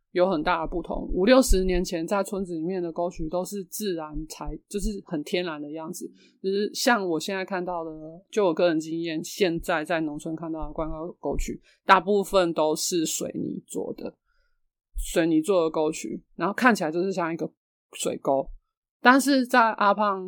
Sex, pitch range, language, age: male, 165-200 Hz, Chinese, 20-39